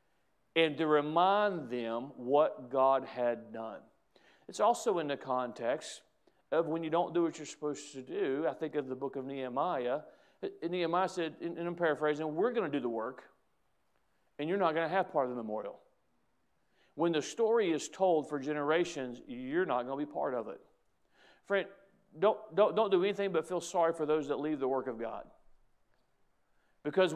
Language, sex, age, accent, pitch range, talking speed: English, male, 50-69, American, 145-180 Hz, 185 wpm